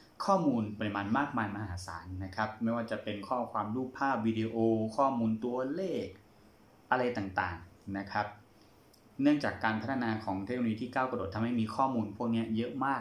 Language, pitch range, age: Thai, 105-130 Hz, 20-39